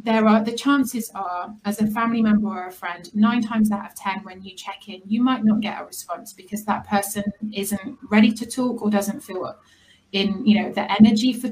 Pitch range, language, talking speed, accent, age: 195-220 Hz, English, 225 wpm, British, 30-49